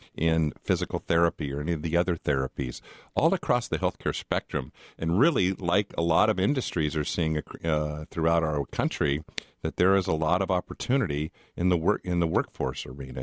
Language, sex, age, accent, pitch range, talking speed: English, male, 50-69, American, 75-95 Hz, 185 wpm